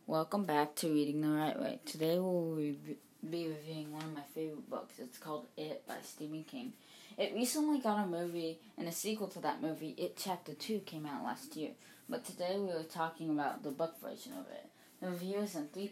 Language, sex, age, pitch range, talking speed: English, female, 20-39, 155-195 Hz, 210 wpm